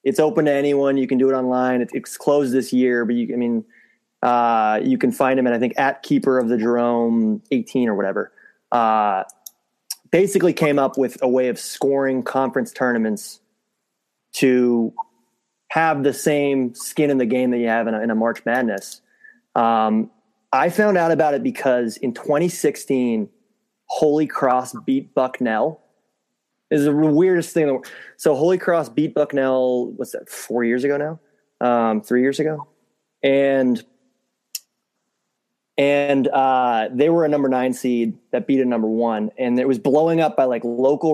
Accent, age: American, 20-39